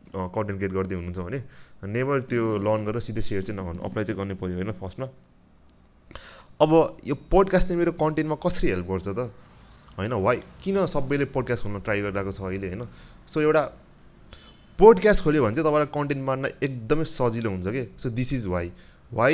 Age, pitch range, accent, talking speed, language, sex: 30-49, 100-145 Hz, Indian, 80 wpm, English, male